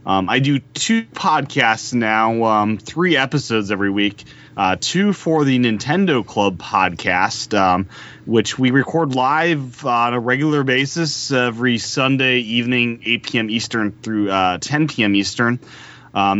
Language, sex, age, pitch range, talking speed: English, male, 30-49, 100-125 Hz, 145 wpm